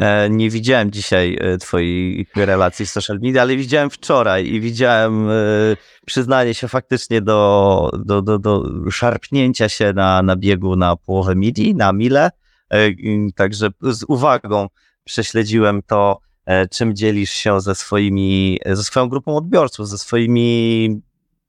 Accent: native